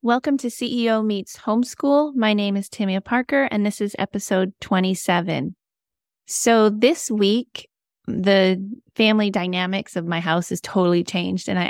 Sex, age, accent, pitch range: female, 20-39, American, 175-220 Hz